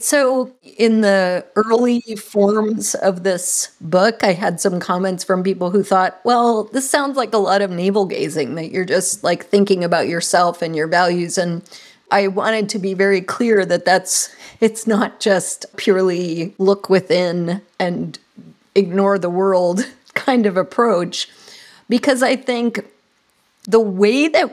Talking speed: 155 wpm